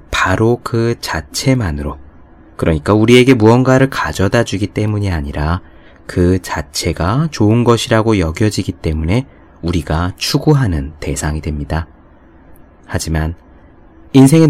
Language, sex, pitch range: Korean, male, 80-125 Hz